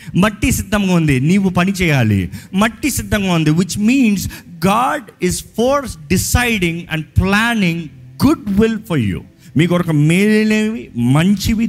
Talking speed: 130 wpm